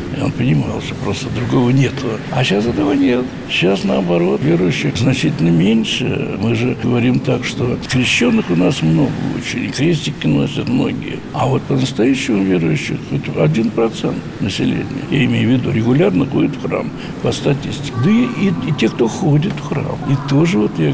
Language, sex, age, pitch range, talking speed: Russian, male, 60-79, 120-150 Hz, 165 wpm